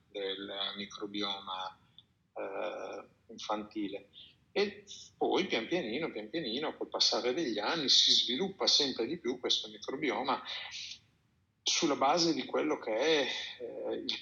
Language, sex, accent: Italian, male, native